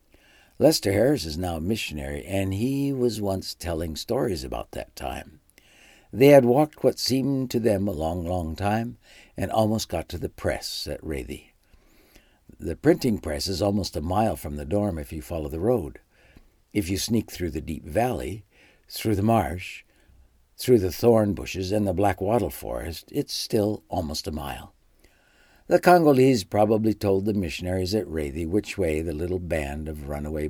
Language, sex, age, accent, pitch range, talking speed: English, male, 60-79, American, 75-110 Hz, 175 wpm